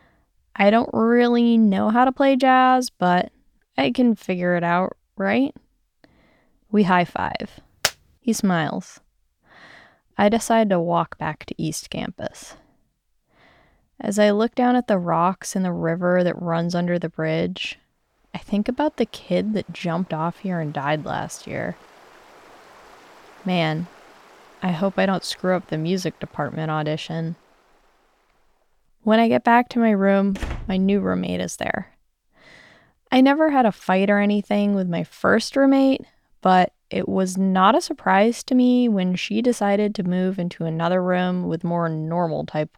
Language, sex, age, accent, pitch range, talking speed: English, female, 10-29, American, 170-220 Hz, 150 wpm